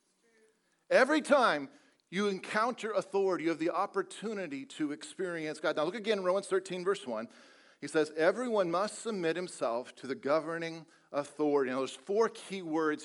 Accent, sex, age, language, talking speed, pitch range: American, male, 50-69, English, 160 wpm, 155-220 Hz